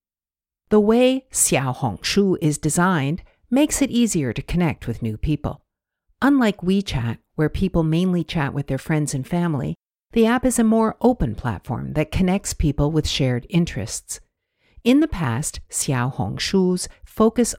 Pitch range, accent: 130-200 Hz, American